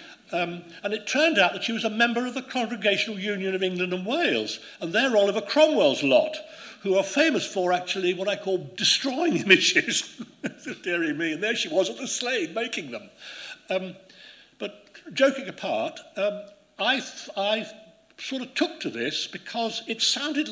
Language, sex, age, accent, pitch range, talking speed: English, male, 60-79, British, 185-295 Hz, 175 wpm